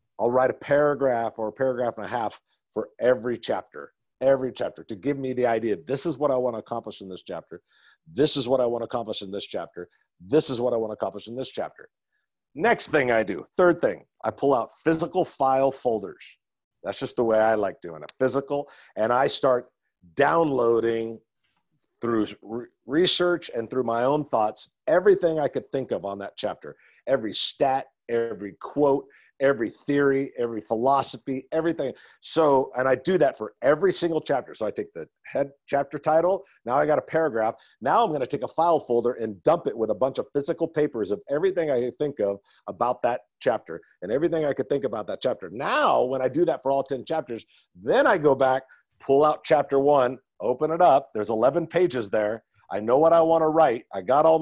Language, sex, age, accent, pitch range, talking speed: English, male, 50-69, American, 115-150 Hz, 205 wpm